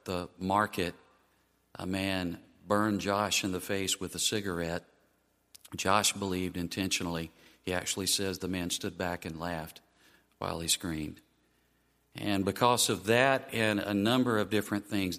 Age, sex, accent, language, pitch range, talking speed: 50-69, male, American, English, 85-100 Hz, 145 wpm